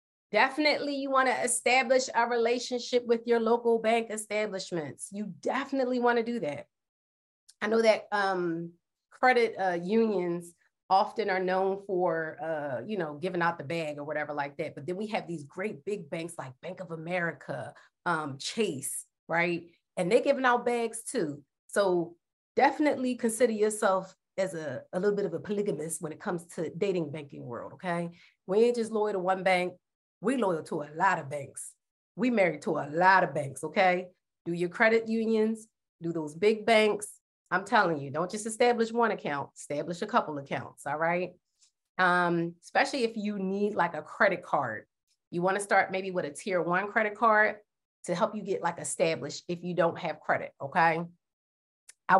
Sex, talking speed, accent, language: female, 180 wpm, American, English